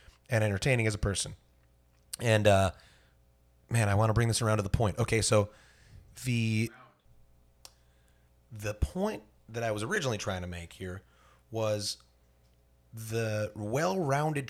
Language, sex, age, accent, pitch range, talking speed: English, male, 30-49, American, 90-120 Hz, 135 wpm